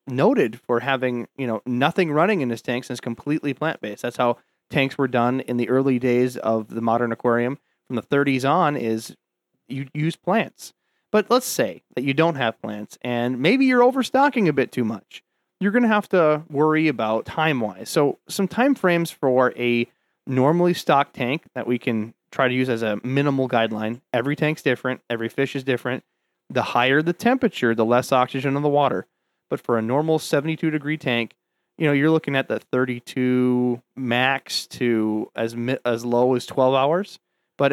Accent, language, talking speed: American, English, 190 wpm